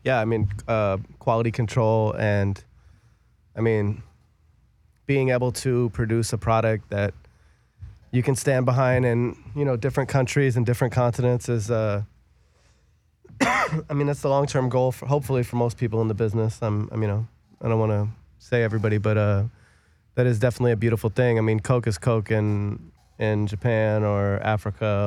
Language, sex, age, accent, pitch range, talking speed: English, male, 20-39, American, 105-120 Hz, 175 wpm